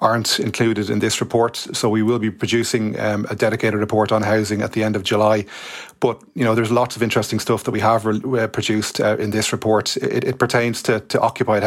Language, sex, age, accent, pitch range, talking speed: English, male, 30-49, Irish, 105-115 Hz, 220 wpm